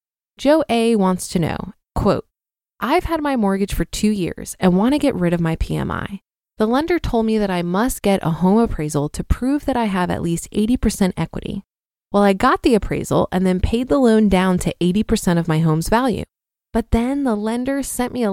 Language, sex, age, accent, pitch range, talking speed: English, female, 20-39, American, 180-245 Hz, 215 wpm